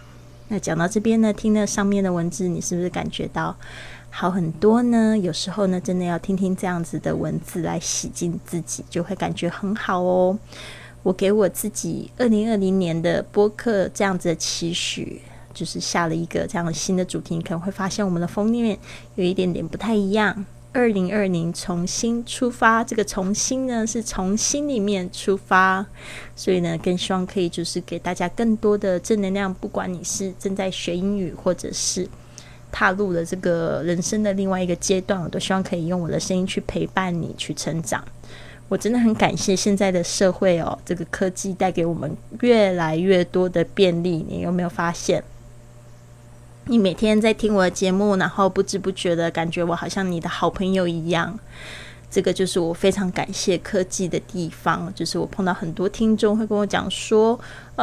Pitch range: 175-205 Hz